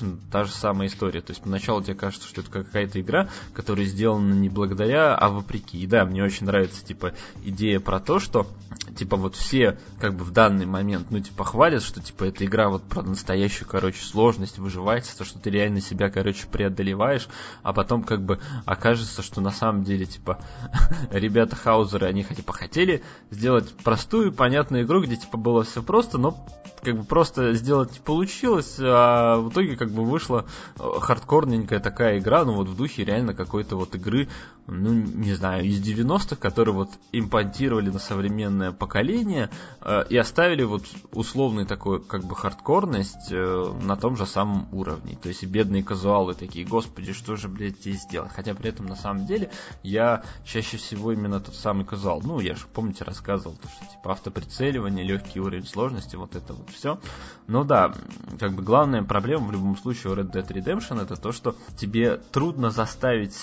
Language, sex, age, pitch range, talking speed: Russian, male, 20-39, 100-120 Hz, 185 wpm